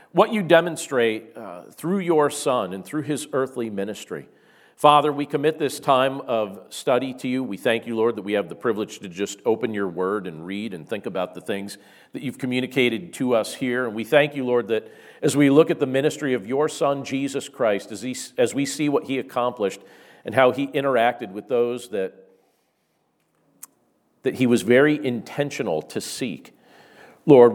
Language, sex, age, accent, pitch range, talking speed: English, male, 50-69, American, 115-145 Hz, 190 wpm